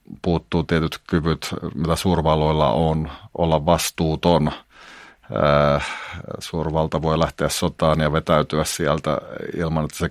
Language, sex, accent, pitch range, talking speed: Finnish, male, native, 75-85 Hz, 105 wpm